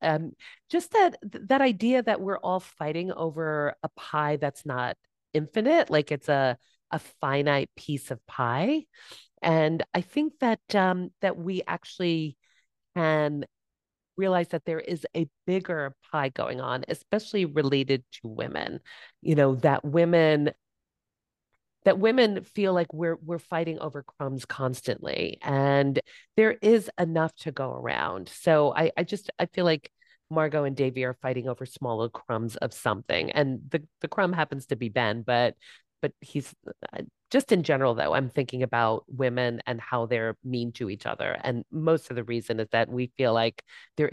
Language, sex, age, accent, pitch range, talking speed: English, female, 40-59, American, 120-170 Hz, 165 wpm